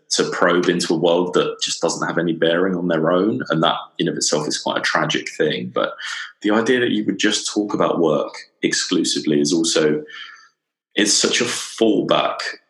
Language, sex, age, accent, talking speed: English, male, 20-39, British, 195 wpm